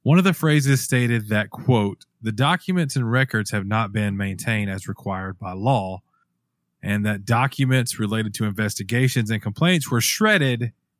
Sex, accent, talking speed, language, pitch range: male, American, 160 wpm, English, 105-145 Hz